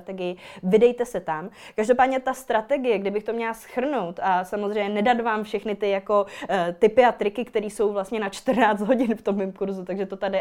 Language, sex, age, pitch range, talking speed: Czech, female, 20-39, 200-245 Hz, 195 wpm